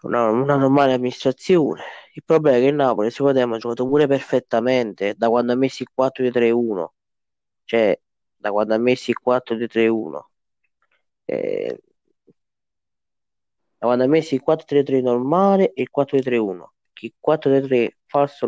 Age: 20-39